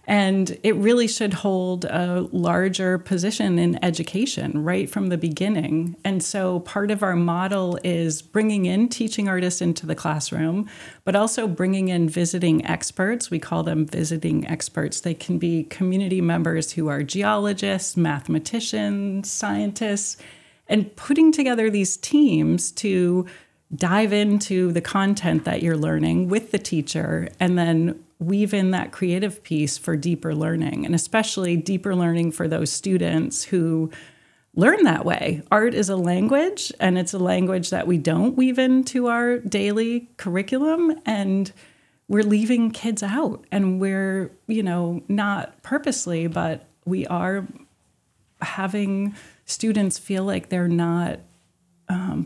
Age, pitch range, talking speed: 30-49, 170-205 Hz, 140 wpm